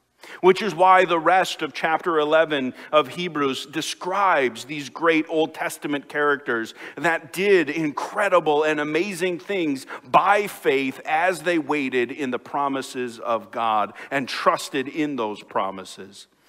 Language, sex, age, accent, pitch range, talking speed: English, male, 50-69, American, 135-180 Hz, 135 wpm